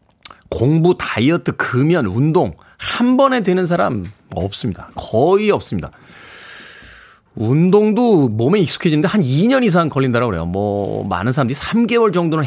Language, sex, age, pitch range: Korean, male, 40-59, 130-185 Hz